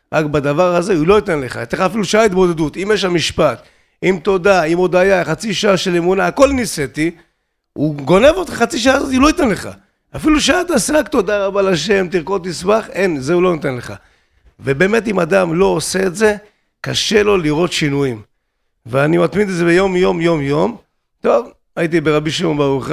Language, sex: Hebrew, male